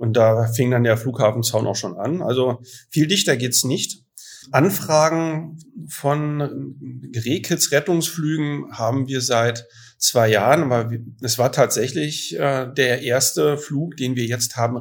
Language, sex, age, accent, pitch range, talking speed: German, male, 40-59, German, 115-135 Hz, 140 wpm